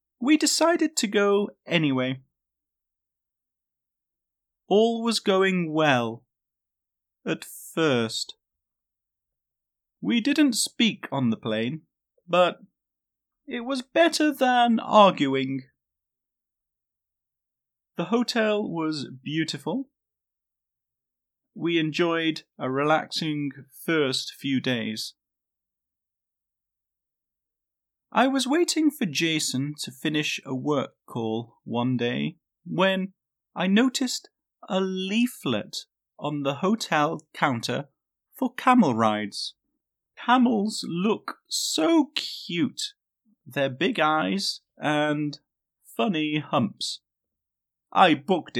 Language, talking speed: English, 85 wpm